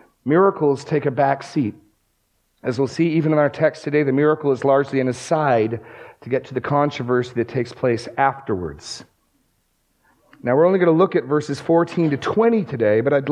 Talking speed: 190 wpm